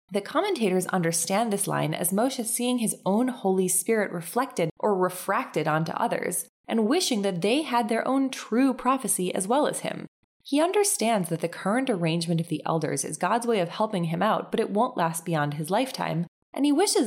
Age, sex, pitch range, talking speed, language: 20-39, female, 175-255 Hz, 195 wpm, English